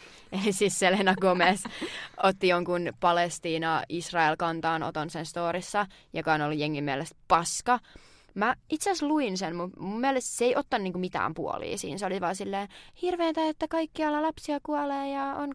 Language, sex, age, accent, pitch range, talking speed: Finnish, female, 20-39, native, 160-210 Hz, 150 wpm